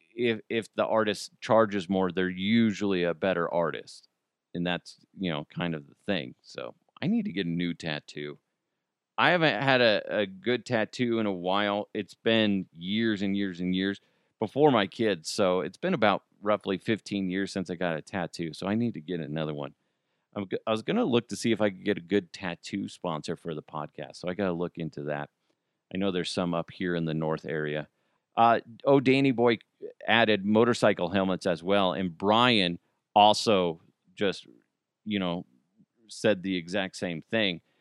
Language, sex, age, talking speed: English, male, 40-59, 195 wpm